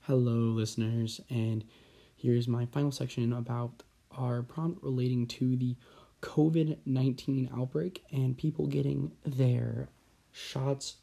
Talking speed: 110 wpm